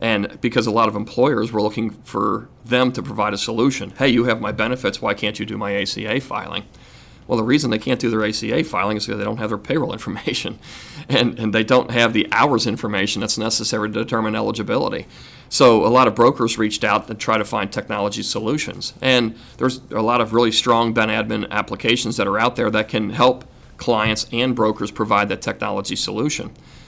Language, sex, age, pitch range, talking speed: English, male, 40-59, 105-120 Hz, 210 wpm